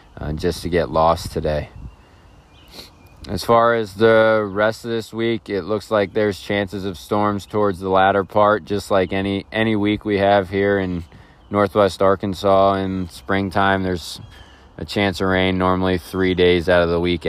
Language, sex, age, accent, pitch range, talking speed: English, male, 20-39, American, 90-105 Hz, 175 wpm